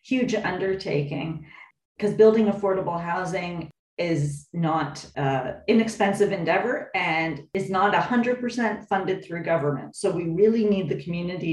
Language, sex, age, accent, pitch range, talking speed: English, female, 40-59, American, 155-195 Hz, 125 wpm